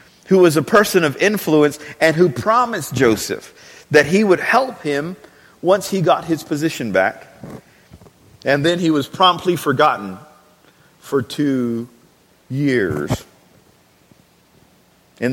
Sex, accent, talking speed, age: male, American, 120 wpm, 40-59